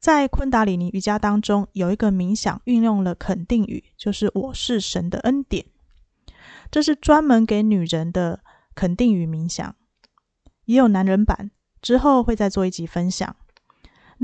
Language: Chinese